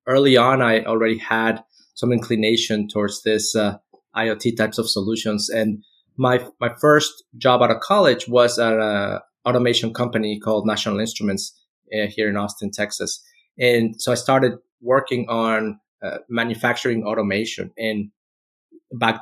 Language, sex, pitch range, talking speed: English, male, 110-130 Hz, 145 wpm